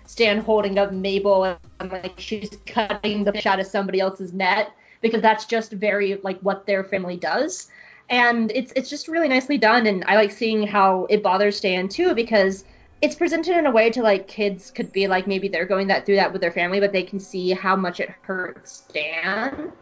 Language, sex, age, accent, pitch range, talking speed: English, female, 20-39, American, 195-230 Hz, 210 wpm